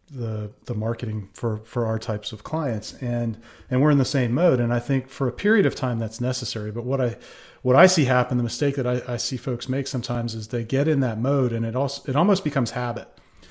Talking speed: 245 wpm